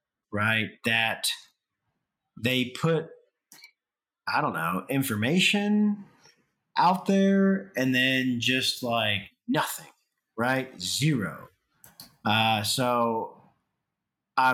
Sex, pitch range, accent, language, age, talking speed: male, 115-165 Hz, American, English, 30-49, 85 wpm